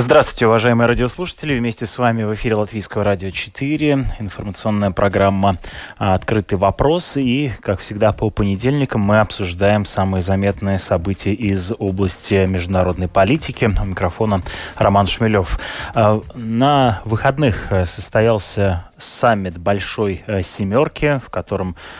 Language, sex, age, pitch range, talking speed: Russian, male, 20-39, 95-110 Hz, 110 wpm